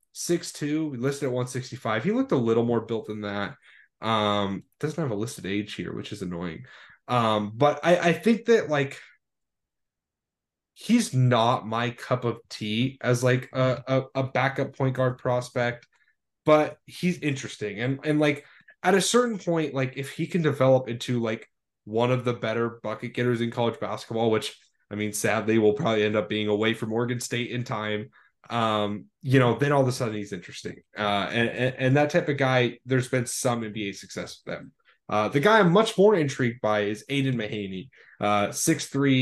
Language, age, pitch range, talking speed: English, 10-29, 110-140 Hz, 185 wpm